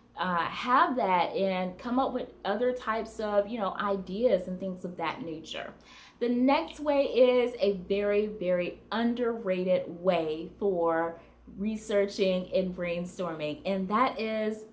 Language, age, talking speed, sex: English, 20-39, 140 wpm, female